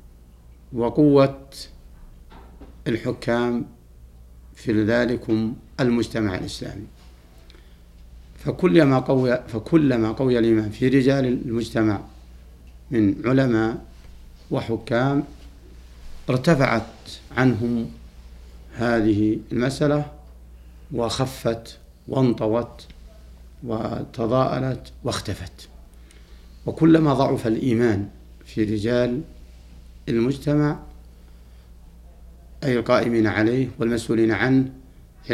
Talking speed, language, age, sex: 60 wpm, Arabic, 60-79, male